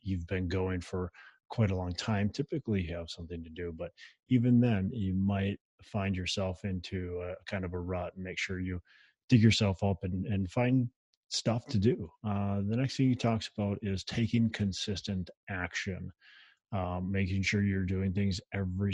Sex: male